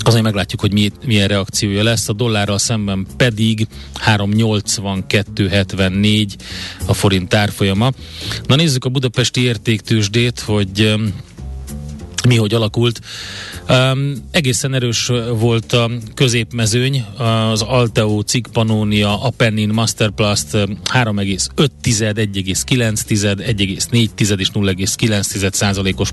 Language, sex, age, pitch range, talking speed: Hungarian, male, 30-49, 100-120 Hz, 80 wpm